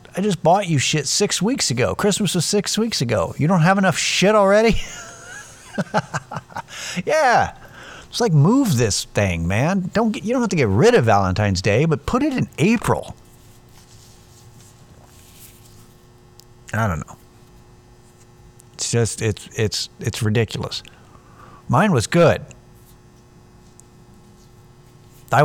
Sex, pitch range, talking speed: male, 105-145 Hz, 125 wpm